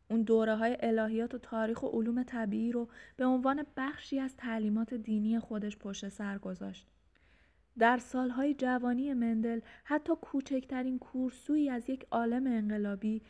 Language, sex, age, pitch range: Persian, female, 20-39, 215-255 Hz